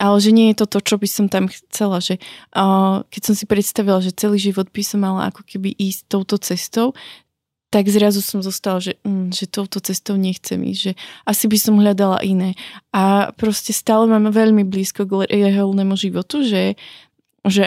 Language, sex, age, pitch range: Slovak, female, 20-39, 190-210 Hz